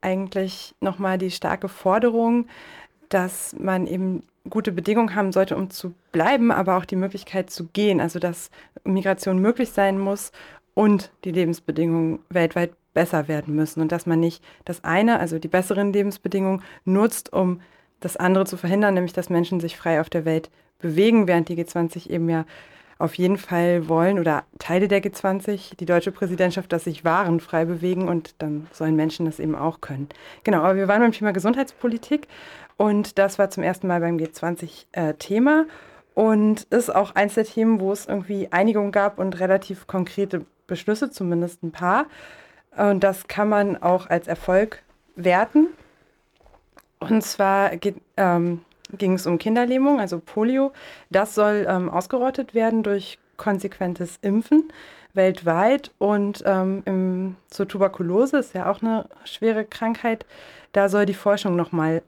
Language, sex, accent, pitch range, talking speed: German, female, German, 170-205 Hz, 160 wpm